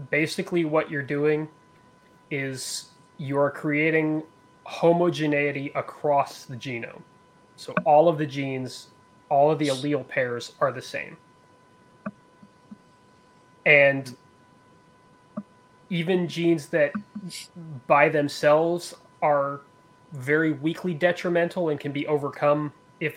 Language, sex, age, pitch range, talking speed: English, male, 30-49, 140-165 Hz, 100 wpm